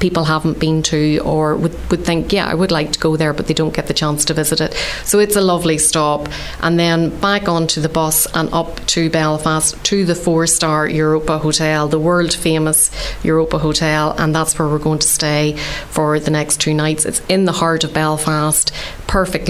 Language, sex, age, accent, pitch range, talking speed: English, female, 30-49, Irish, 155-165 Hz, 210 wpm